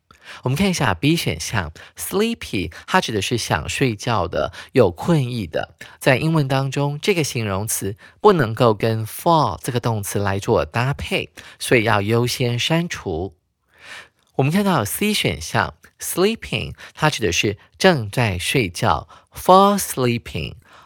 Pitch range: 105-155 Hz